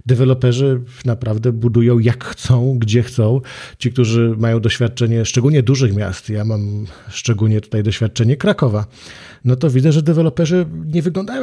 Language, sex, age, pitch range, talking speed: Polish, male, 40-59, 115-130 Hz, 140 wpm